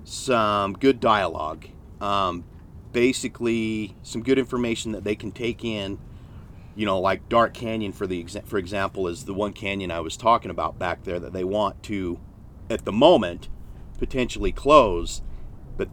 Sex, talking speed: male, 160 wpm